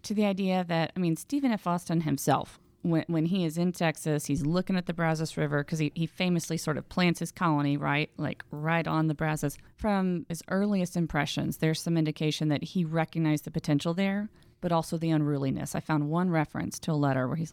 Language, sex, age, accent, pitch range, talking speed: English, female, 30-49, American, 155-190 Hz, 215 wpm